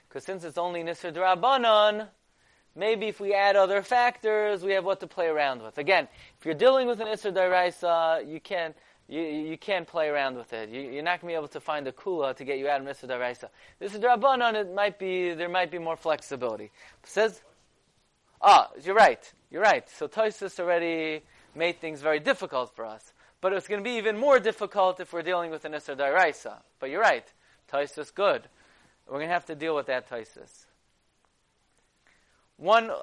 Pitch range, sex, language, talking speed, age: 140-200 Hz, male, English, 190 wpm, 20-39